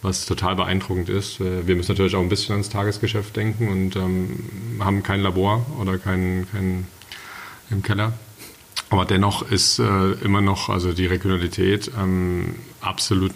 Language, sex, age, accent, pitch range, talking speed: German, male, 40-59, German, 90-105 Hz, 155 wpm